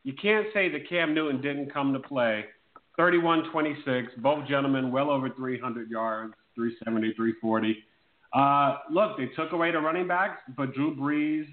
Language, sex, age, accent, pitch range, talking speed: English, male, 40-59, American, 115-150 Hz, 155 wpm